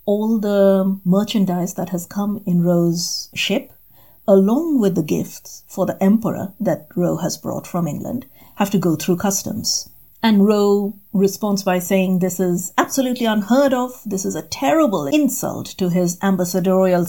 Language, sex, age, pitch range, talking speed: English, female, 50-69, 180-220 Hz, 160 wpm